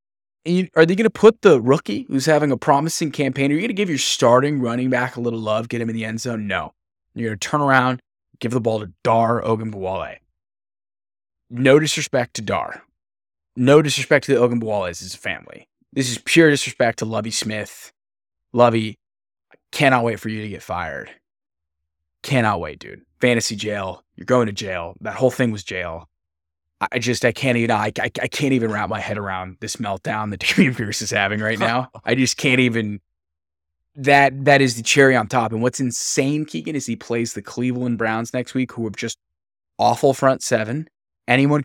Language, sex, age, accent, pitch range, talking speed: English, male, 20-39, American, 105-130 Hz, 200 wpm